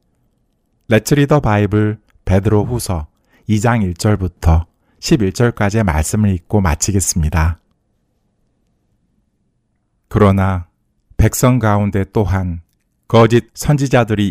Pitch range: 90-115 Hz